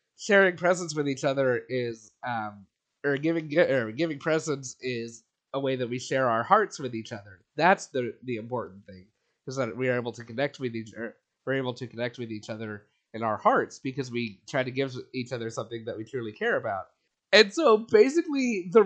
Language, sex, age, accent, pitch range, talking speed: English, male, 30-49, American, 125-175 Hz, 200 wpm